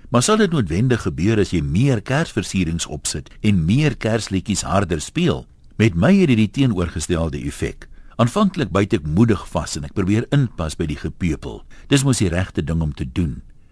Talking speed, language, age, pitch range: 190 wpm, Dutch, 60-79, 90-130 Hz